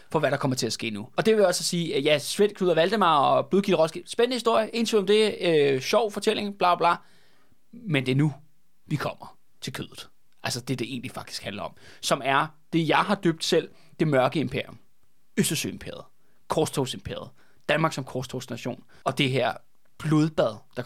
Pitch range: 135-175 Hz